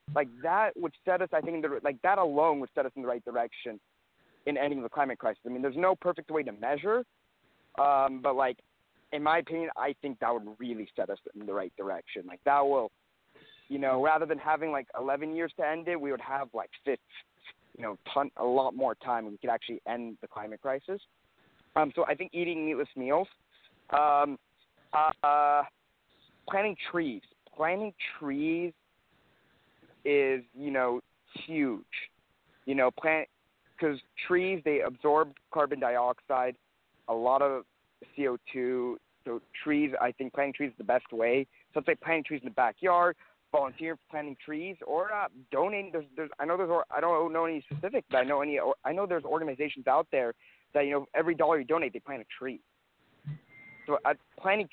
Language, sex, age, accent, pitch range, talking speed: English, male, 30-49, American, 130-165 Hz, 185 wpm